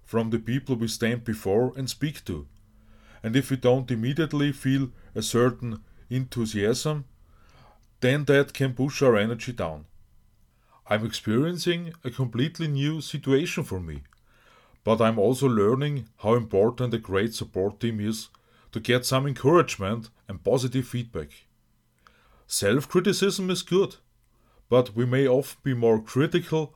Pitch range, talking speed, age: 110-135 Hz, 140 wpm, 30-49